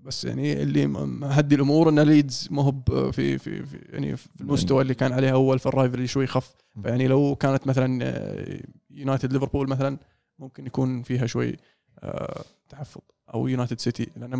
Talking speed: 165 wpm